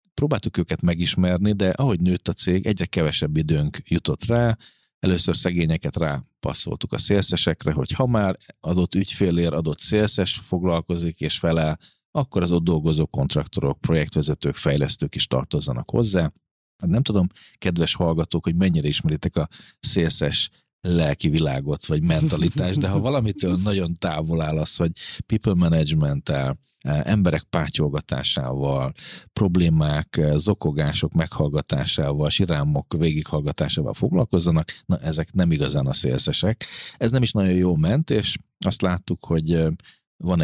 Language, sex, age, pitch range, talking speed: Hungarian, male, 40-59, 80-95 Hz, 130 wpm